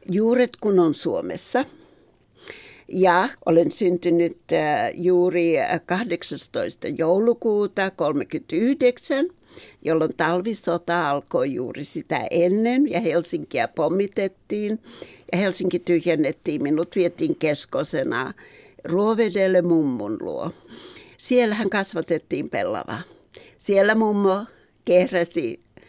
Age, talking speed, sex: 60-79, 80 wpm, female